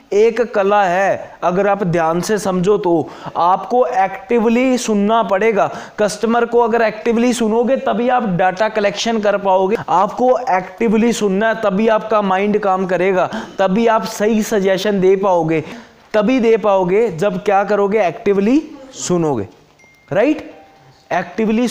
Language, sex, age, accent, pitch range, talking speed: Hindi, male, 20-39, native, 170-220 Hz, 135 wpm